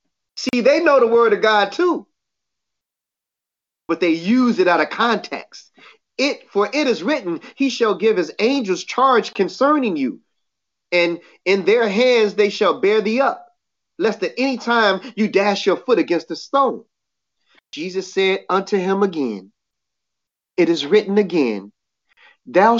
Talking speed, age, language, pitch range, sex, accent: 155 wpm, 30-49, English, 170-235 Hz, male, American